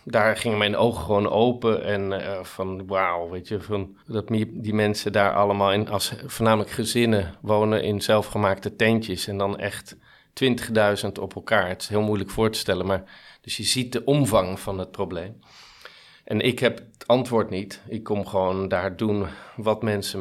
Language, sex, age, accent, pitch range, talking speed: English, male, 40-59, Dutch, 100-115 Hz, 180 wpm